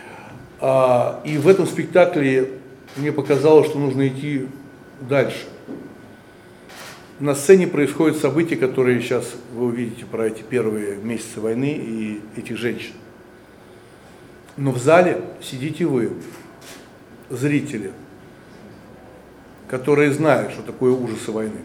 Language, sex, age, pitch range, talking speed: Russian, male, 60-79, 130-165 Hz, 105 wpm